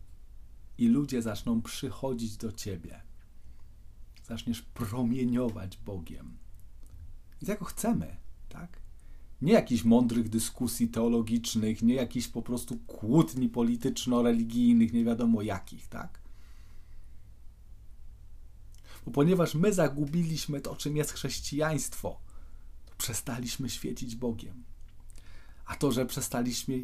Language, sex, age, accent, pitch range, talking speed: Polish, male, 40-59, native, 100-135 Hz, 100 wpm